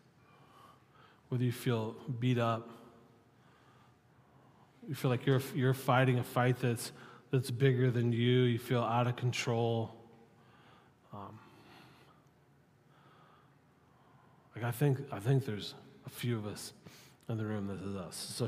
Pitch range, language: 125-145 Hz, English